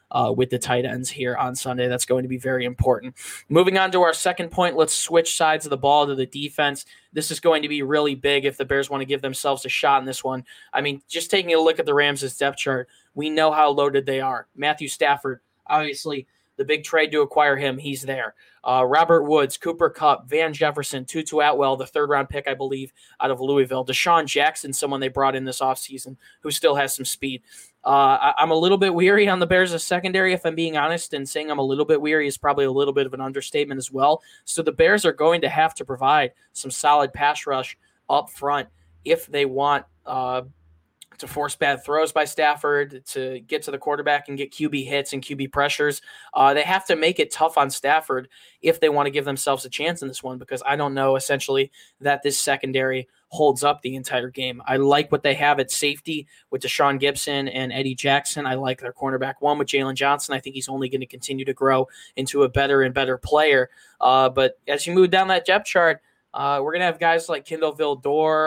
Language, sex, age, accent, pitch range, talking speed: English, male, 20-39, American, 135-155 Hz, 230 wpm